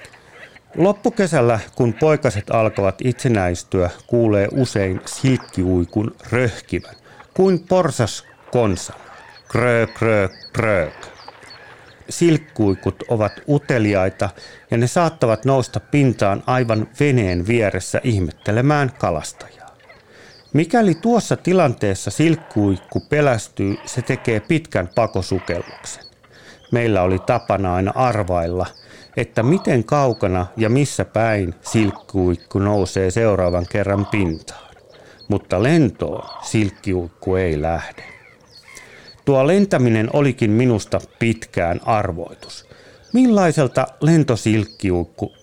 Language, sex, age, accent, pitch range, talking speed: Finnish, male, 40-59, native, 100-135 Hz, 85 wpm